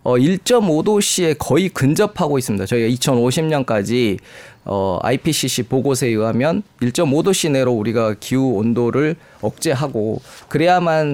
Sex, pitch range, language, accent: male, 120-160 Hz, Korean, native